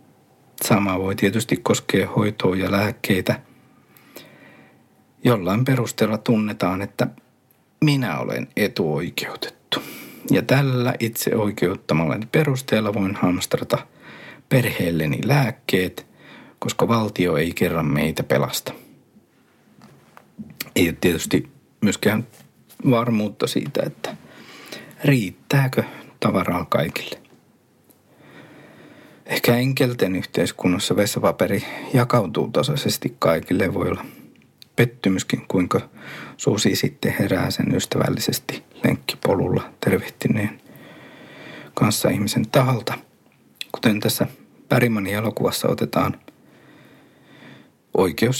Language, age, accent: Finnish, 60-79, native